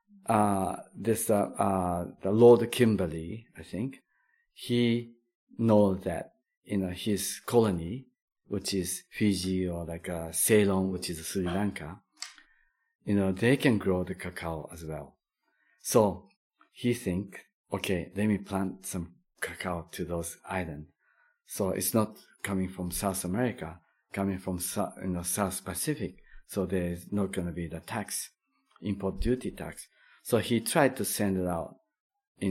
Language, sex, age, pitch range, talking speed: English, male, 50-69, 90-105 Hz, 150 wpm